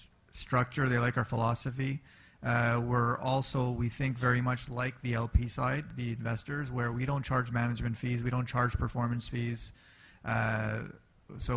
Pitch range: 115-125 Hz